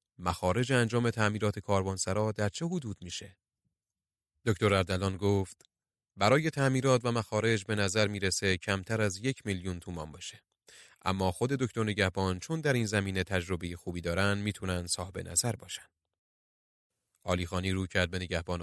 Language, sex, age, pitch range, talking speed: Persian, male, 30-49, 90-110 Hz, 145 wpm